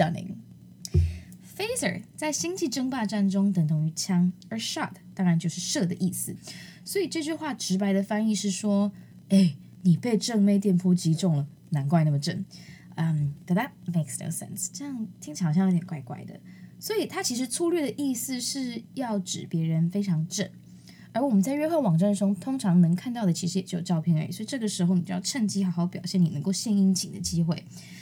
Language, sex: Chinese, female